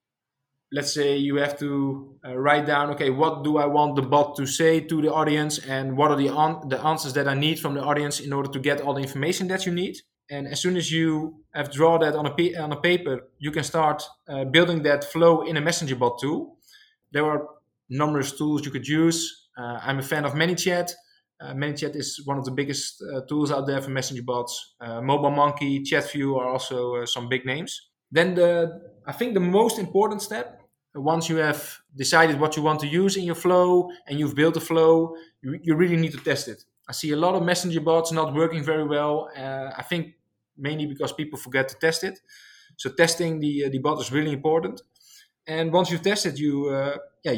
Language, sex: English, male